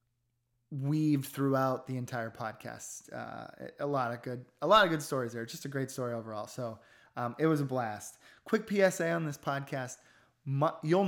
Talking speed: 180 wpm